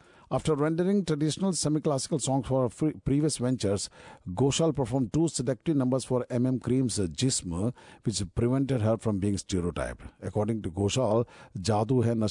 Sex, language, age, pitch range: male, Japanese, 50-69, 105-130 Hz